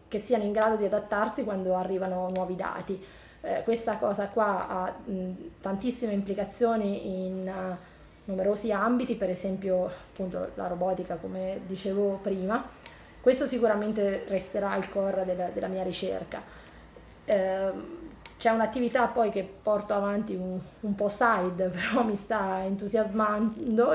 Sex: female